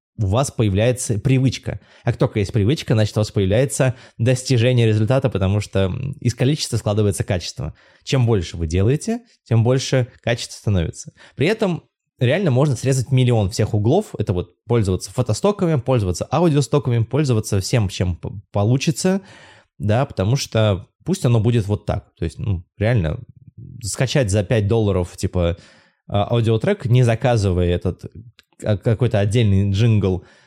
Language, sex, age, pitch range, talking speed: Russian, male, 20-39, 100-125 Hz, 140 wpm